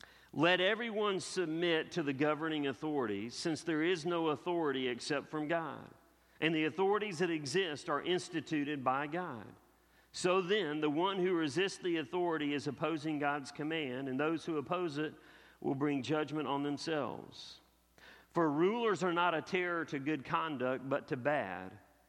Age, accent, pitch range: 50-69, American, 145-170 Hz